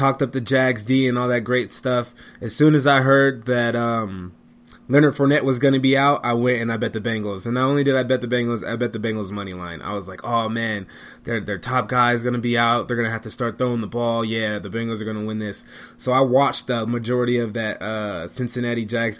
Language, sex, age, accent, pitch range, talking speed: English, male, 20-39, American, 115-140 Hz, 265 wpm